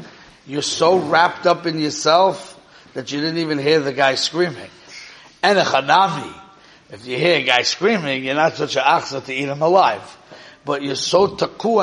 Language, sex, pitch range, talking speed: English, male, 135-175 Hz, 185 wpm